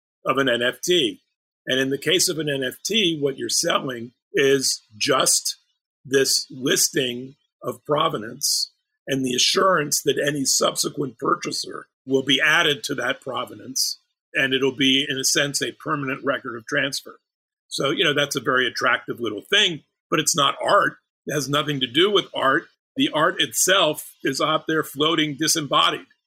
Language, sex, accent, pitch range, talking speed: English, male, American, 130-155 Hz, 160 wpm